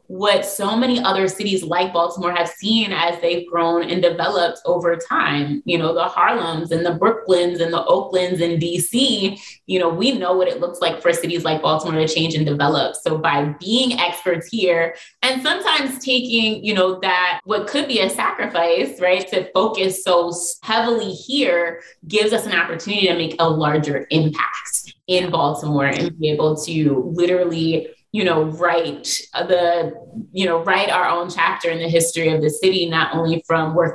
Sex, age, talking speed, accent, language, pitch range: female, 20-39, 180 wpm, American, English, 165-190 Hz